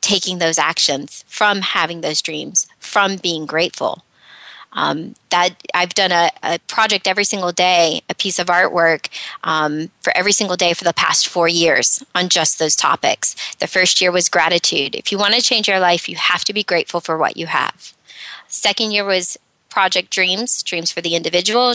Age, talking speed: 20-39, 190 wpm